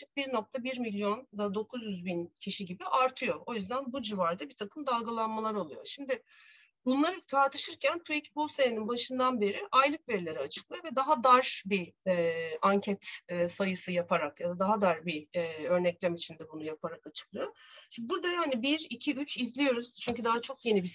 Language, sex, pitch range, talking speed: Turkish, female, 200-270 Hz, 165 wpm